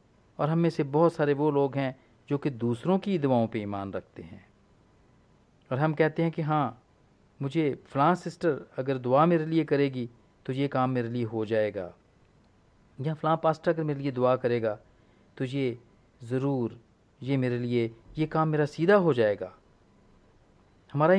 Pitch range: 110-155 Hz